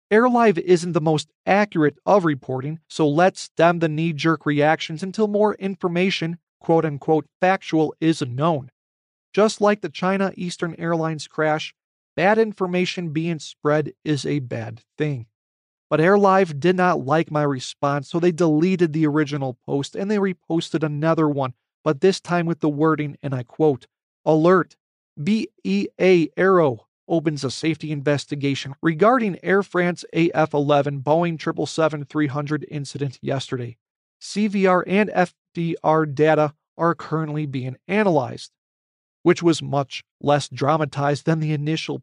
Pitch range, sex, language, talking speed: 145-180 Hz, male, English, 135 wpm